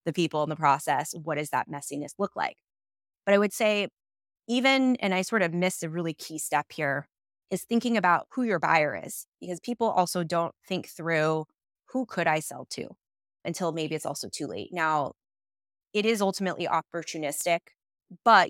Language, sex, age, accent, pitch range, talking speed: English, female, 20-39, American, 150-175 Hz, 180 wpm